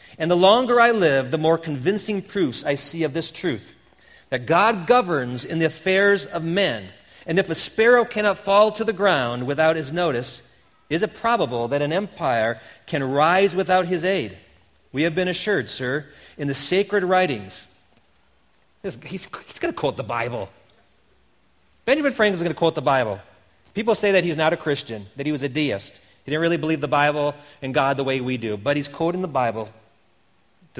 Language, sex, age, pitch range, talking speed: English, male, 40-59, 130-180 Hz, 195 wpm